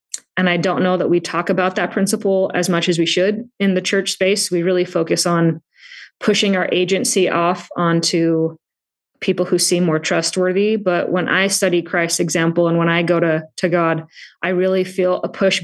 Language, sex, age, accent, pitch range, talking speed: English, female, 20-39, American, 170-190 Hz, 195 wpm